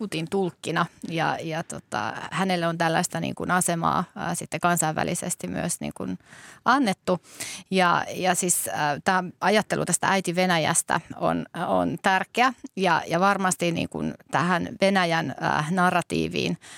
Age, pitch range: 30-49, 170-190 Hz